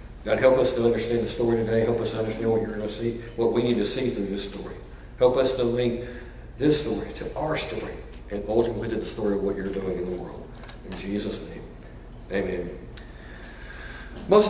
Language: English